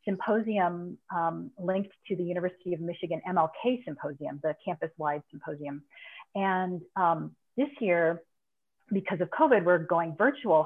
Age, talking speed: 30-49, 130 wpm